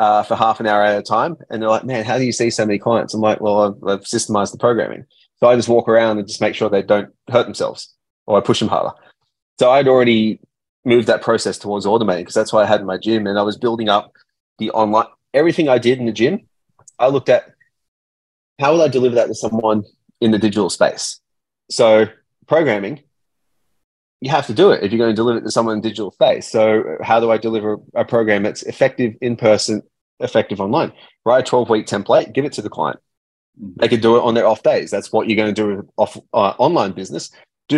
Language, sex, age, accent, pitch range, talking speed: English, male, 30-49, Australian, 105-120 Hz, 235 wpm